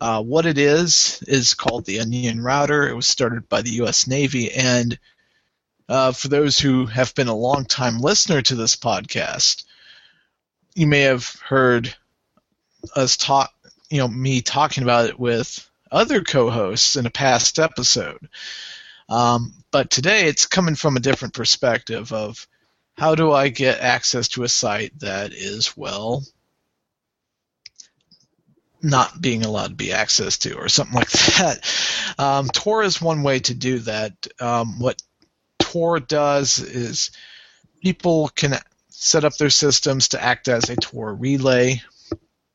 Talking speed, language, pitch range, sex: 150 wpm, English, 120-145 Hz, male